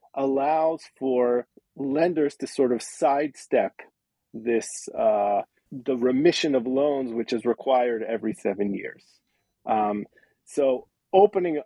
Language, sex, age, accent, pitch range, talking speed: English, male, 40-59, American, 120-155 Hz, 115 wpm